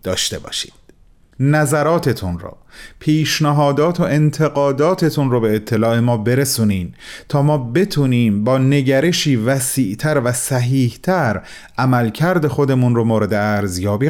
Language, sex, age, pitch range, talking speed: Persian, male, 30-49, 110-150 Hz, 115 wpm